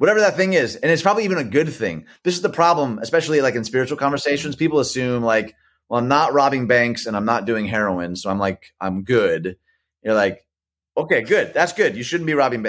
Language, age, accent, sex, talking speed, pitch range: English, 30-49, American, male, 225 wpm, 95-135 Hz